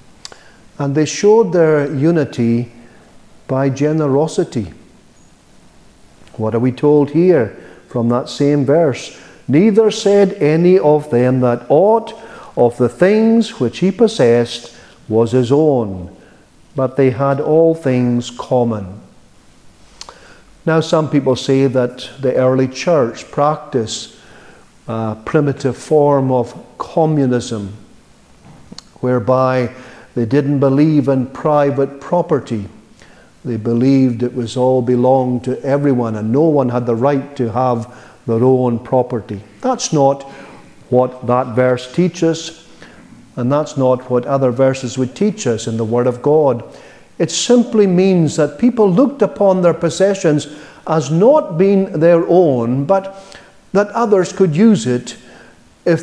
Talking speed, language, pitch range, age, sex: 125 wpm, English, 125-165 Hz, 50-69, male